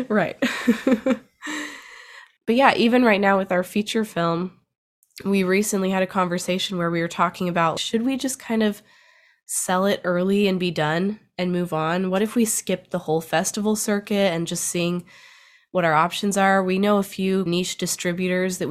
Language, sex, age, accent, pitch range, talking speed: English, female, 20-39, American, 165-200 Hz, 180 wpm